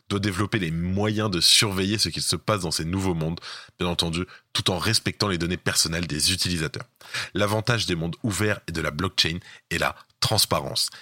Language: French